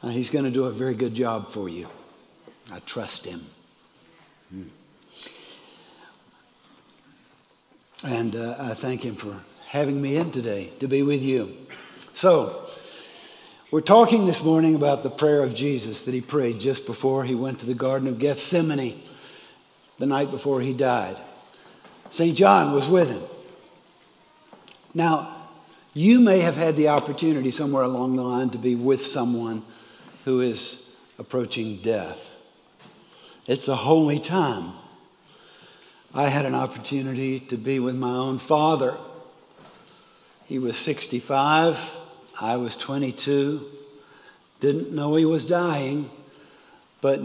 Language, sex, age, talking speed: English, male, 60-79, 135 wpm